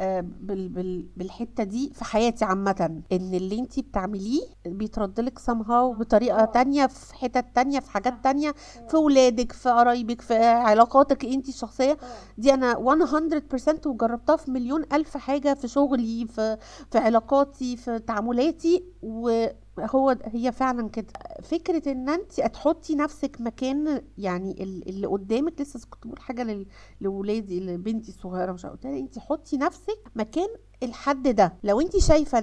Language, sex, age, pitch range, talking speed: Arabic, female, 50-69, 220-285 Hz, 135 wpm